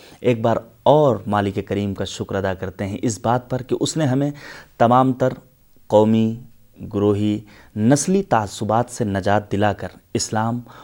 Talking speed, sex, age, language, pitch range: 155 wpm, male, 30-49, Urdu, 100-130 Hz